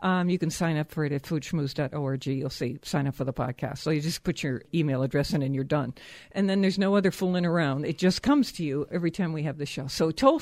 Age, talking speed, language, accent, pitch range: 60-79, 270 wpm, English, American, 155-195 Hz